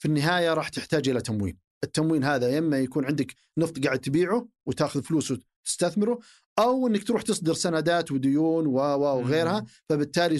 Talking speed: 145 wpm